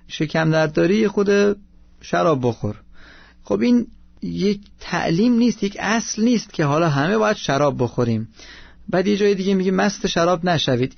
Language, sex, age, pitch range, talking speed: Persian, male, 30-49, 150-205 Hz, 155 wpm